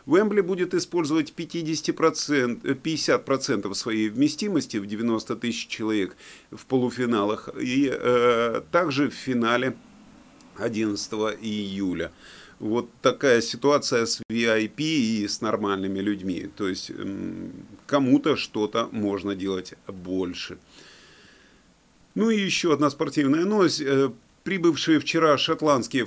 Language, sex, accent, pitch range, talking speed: Russian, male, native, 110-155 Hz, 110 wpm